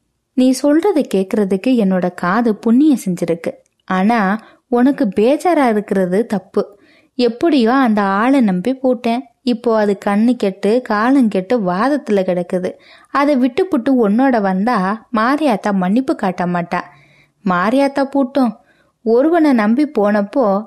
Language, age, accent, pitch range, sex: Tamil, 20-39, native, 200-265 Hz, female